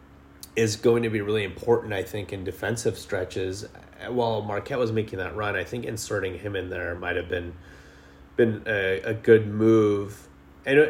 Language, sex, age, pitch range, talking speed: English, male, 30-49, 95-125 Hz, 175 wpm